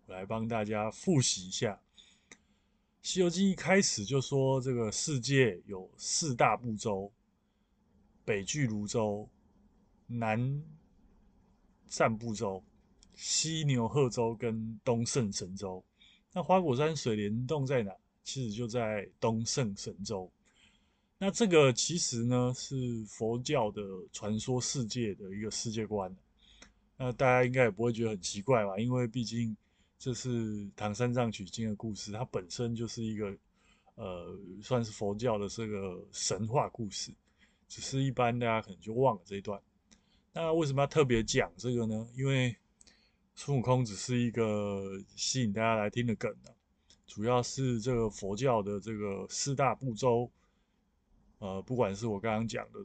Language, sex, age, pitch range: Chinese, male, 20-39, 105-125 Hz